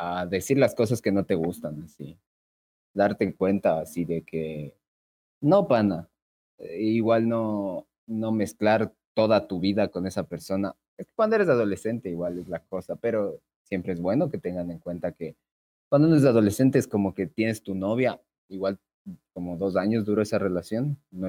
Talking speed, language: 175 wpm, Spanish